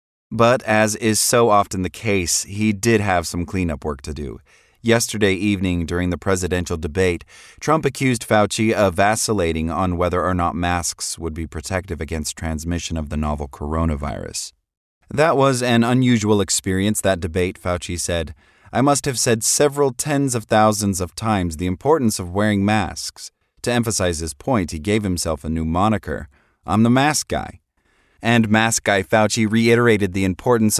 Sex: male